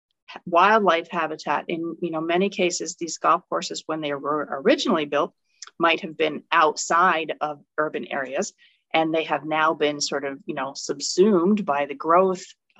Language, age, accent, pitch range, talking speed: English, 40-59, American, 155-185 Hz, 165 wpm